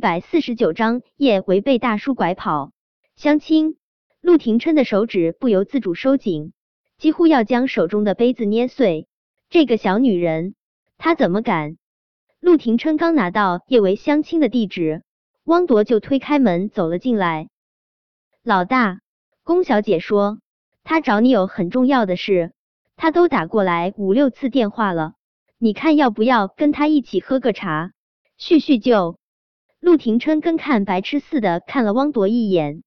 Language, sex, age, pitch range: Chinese, male, 20-39, 190-290 Hz